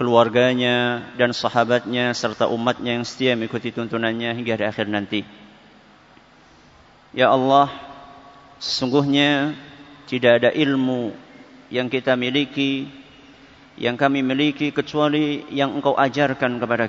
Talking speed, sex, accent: 105 wpm, male, native